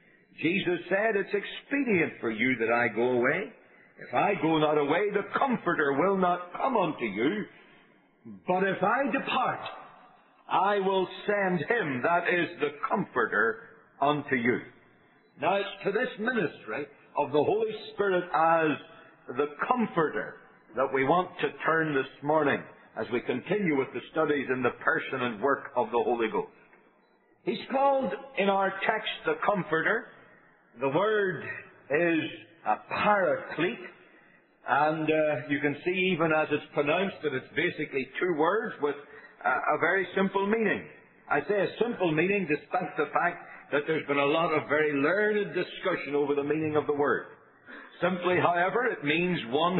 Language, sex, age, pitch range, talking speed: English, male, 60-79, 150-205 Hz, 155 wpm